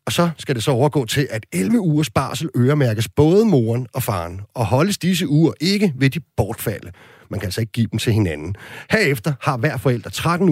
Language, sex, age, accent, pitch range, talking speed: Danish, male, 40-59, native, 110-145 Hz, 210 wpm